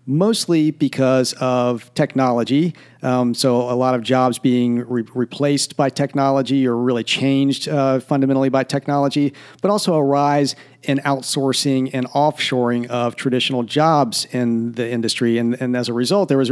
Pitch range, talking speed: 125-145 Hz, 155 wpm